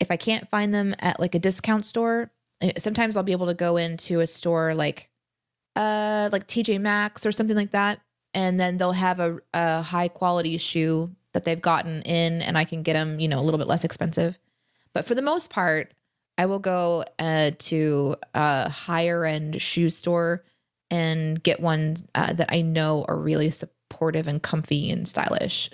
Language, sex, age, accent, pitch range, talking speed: English, female, 20-39, American, 165-200 Hz, 190 wpm